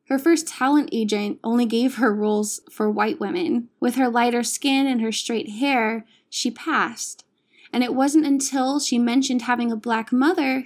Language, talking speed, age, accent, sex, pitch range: English, 175 wpm, 20-39, American, female, 220-265 Hz